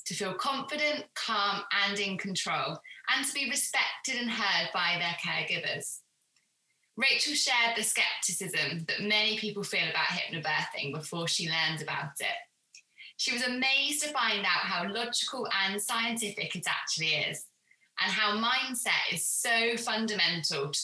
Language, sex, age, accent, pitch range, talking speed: English, female, 20-39, British, 170-240 Hz, 145 wpm